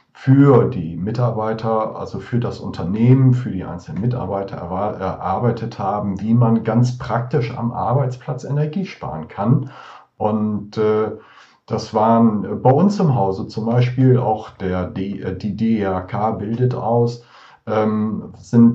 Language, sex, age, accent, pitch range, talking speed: German, male, 40-59, German, 110-130 Hz, 135 wpm